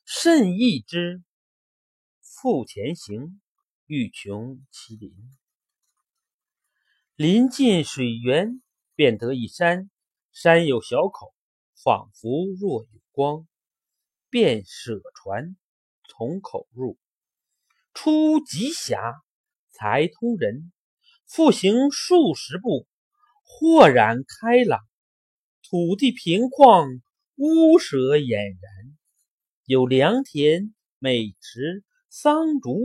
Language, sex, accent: Chinese, male, native